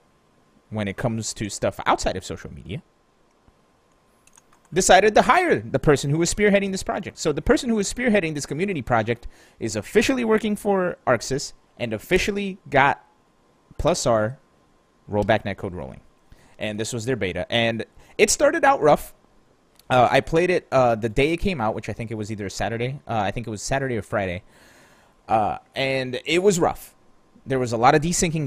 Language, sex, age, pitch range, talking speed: English, male, 30-49, 105-145 Hz, 185 wpm